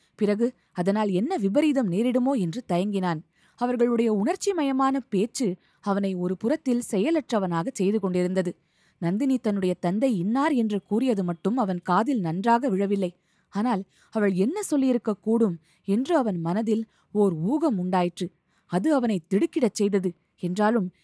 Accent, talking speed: native, 125 wpm